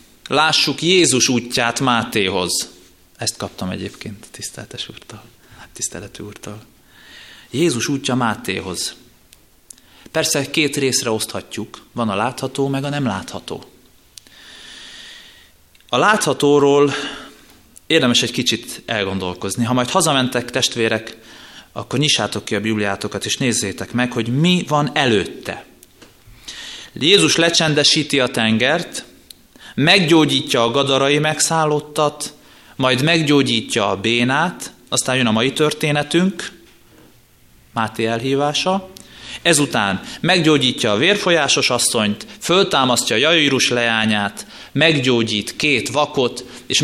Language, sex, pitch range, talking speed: Hungarian, male, 115-150 Hz, 100 wpm